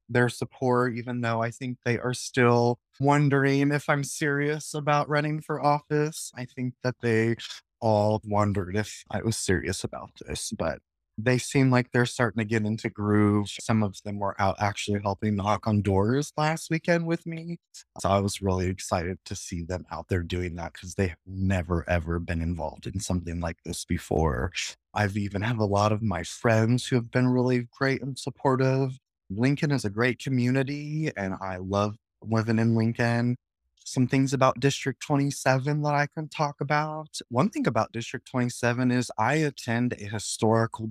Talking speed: 180 wpm